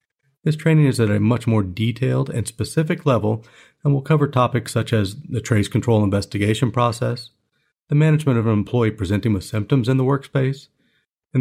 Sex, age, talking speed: male, 40-59, 180 wpm